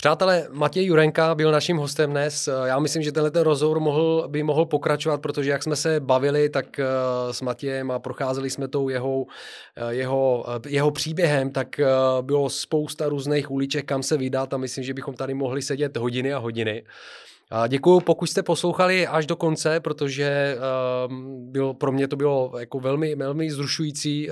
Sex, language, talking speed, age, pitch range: male, Czech, 170 wpm, 30-49, 125-150 Hz